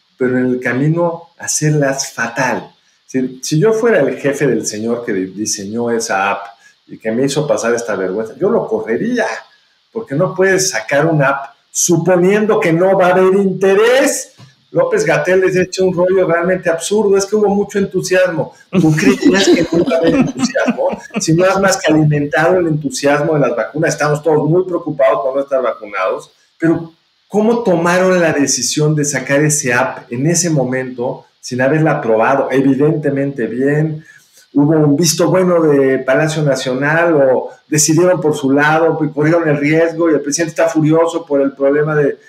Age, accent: 50-69, Mexican